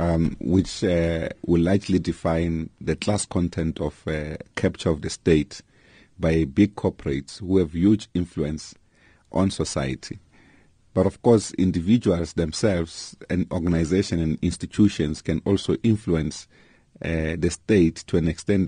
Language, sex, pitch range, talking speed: English, male, 80-95 Hz, 135 wpm